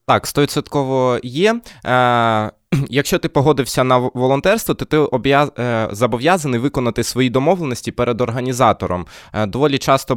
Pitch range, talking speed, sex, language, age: 115-140 Hz, 110 wpm, male, Ukrainian, 20-39